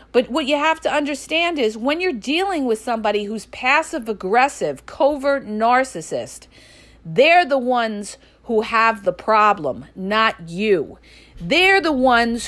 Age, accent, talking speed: 50-69, American, 140 wpm